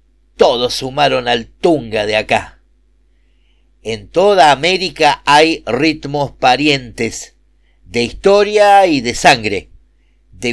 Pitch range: 120-180 Hz